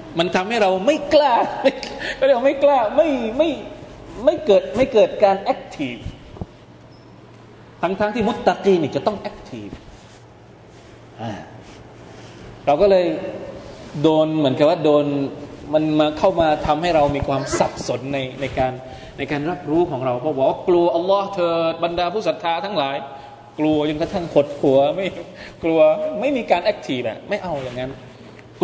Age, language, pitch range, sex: 20-39, Thai, 130-195 Hz, male